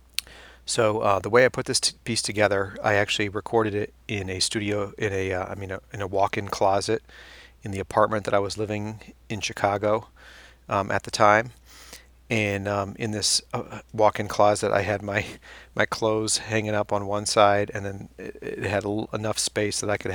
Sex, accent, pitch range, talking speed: male, American, 95-105 Hz, 210 wpm